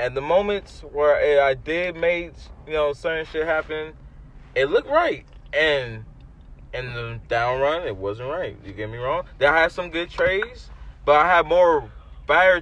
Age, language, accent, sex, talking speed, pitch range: 20-39, English, American, male, 180 wpm, 110-150 Hz